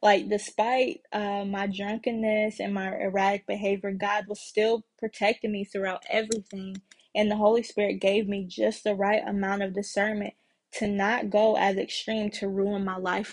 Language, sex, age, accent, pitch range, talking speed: English, female, 20-39, American, 200-225 Hz, 165 wpm